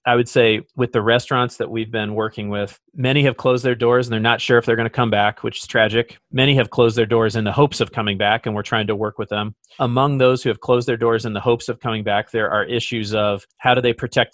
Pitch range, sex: 110-125 Hz, male